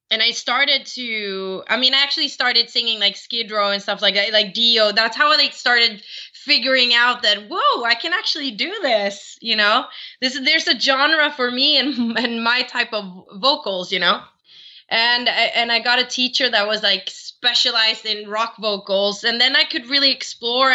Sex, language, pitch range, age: female, English, 205-270 Hz, 20-39